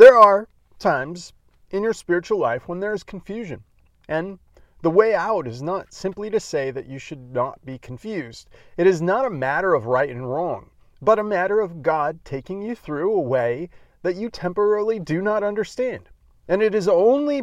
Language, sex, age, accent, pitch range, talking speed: English, male, 40-59, American, 140-205 Hz, 190 wpm